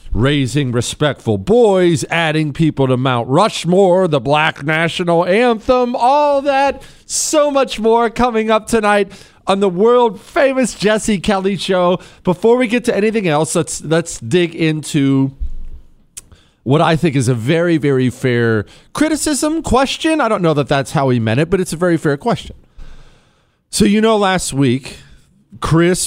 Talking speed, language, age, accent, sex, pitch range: 155 wpm, English, 40-59, American, male, 125-185 Hz